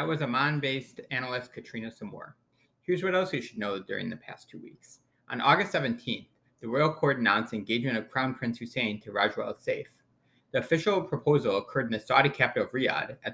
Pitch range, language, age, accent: 115-145 Hz, English, 30-49, American